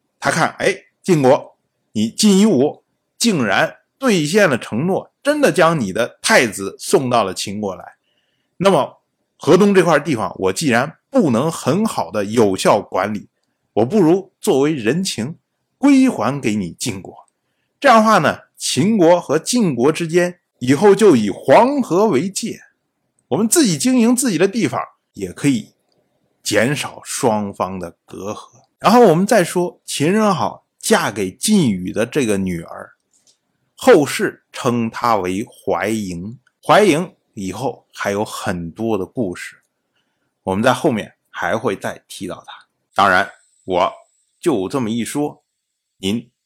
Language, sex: Chinese, male